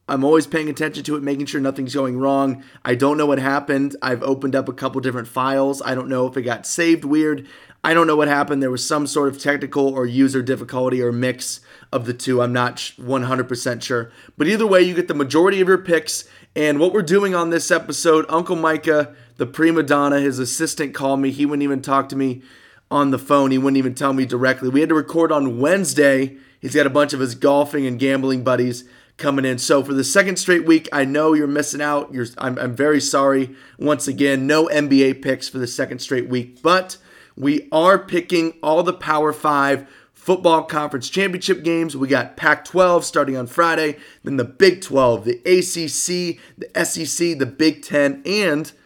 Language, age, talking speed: English, 30-49, 205 wpm